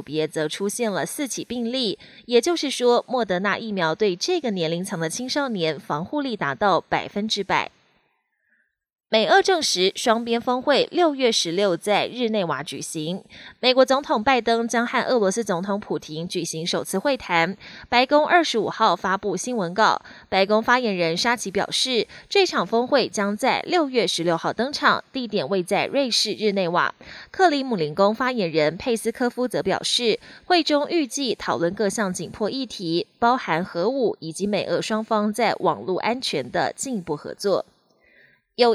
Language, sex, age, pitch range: Chinese, female, 20-39, 185-255 Hz